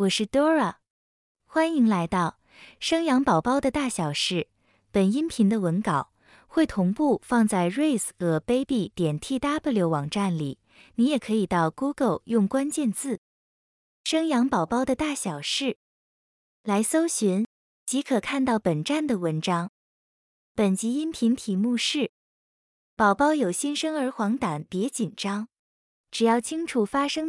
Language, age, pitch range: Chinese, 20-39, 195-275 Hz